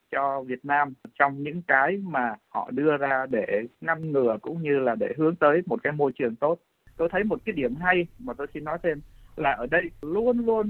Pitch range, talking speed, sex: 130-175 Hz, 225 wpm, male